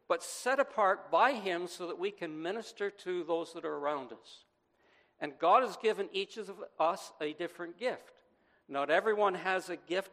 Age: 60-79